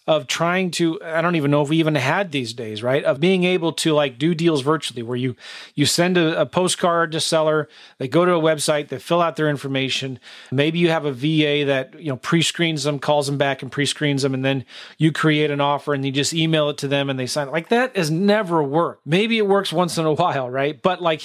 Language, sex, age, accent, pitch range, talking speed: English, male, 30-49, American, 140-175 Hz, 250 wpm